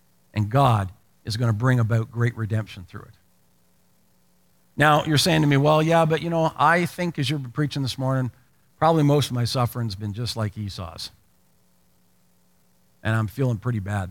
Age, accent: 50-69, American